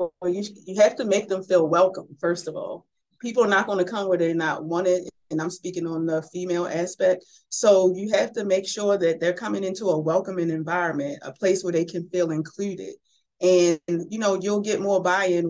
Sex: female